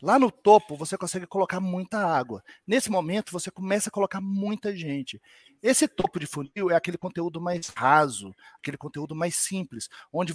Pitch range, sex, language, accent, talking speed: 155-210 Hz, male, Portuguese, Brazilian, 175 wpm